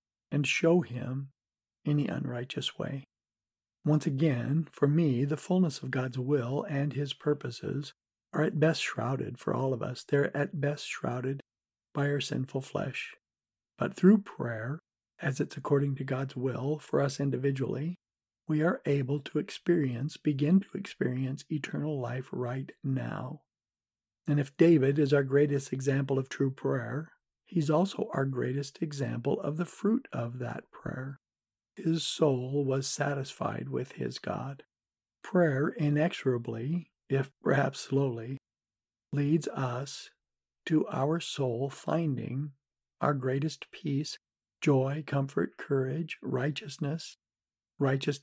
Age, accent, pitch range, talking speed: 50-69, American, 135-155 Hz, 130 wpm